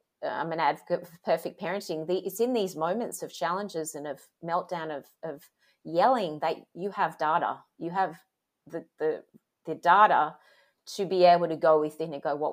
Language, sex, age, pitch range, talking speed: English, female, 30-49, 155-190 Hz, 175 wpm